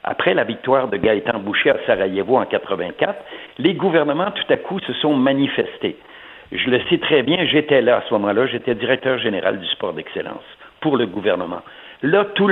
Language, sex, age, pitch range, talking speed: French, male, 60-79, 130-180 Hz, 185 wpm